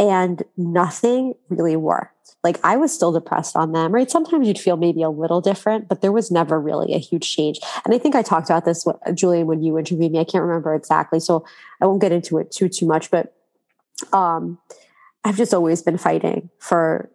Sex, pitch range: female, 165-190 Hz